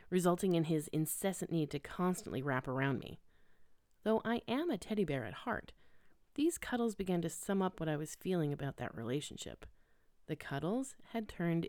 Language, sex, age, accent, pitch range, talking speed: English, female, 30-49, American, 155-220 Hz, 180 wpm